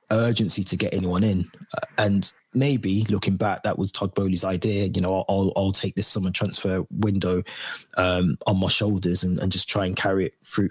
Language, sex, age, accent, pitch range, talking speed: English, male, 20-39, British, 95-110 Hz, 195 wpm